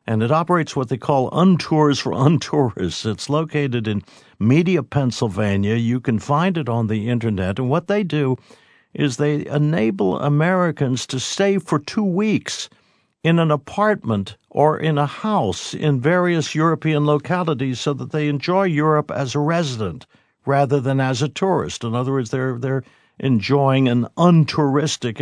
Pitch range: 115-155 Hz